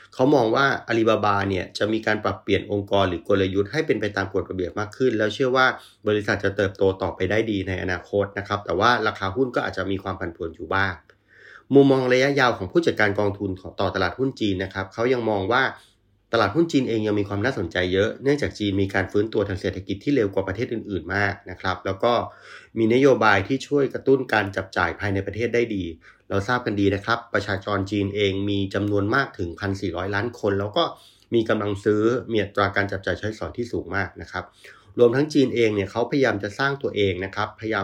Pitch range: 95-115 Hz